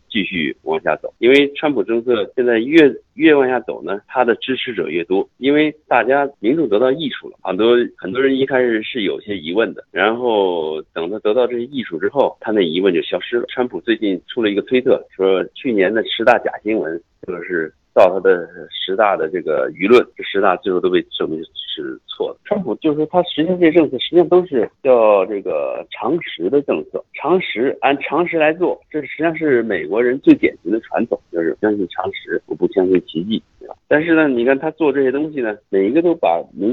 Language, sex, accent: Chinese, male, native